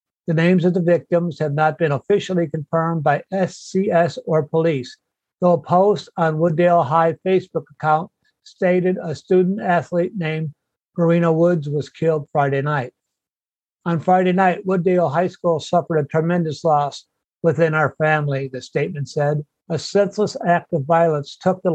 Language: English